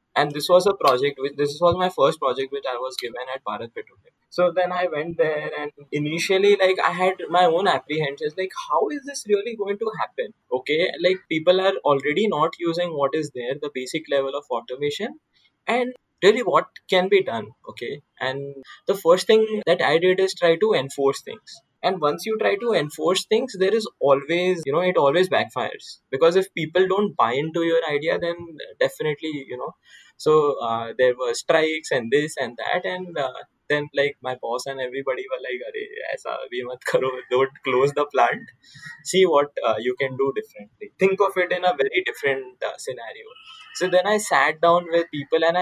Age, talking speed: 10-29, 200 wpm